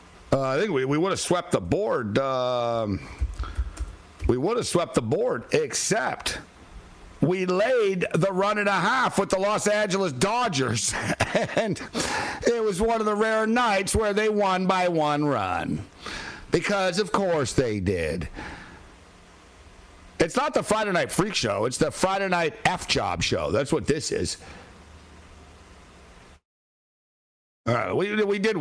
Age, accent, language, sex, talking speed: 60-79, American, English, male, 145 wpm